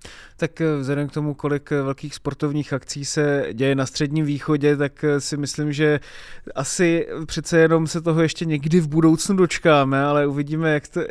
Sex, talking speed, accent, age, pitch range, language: male, 155 wpm, native, 20-39, 130-150 Hz, Czech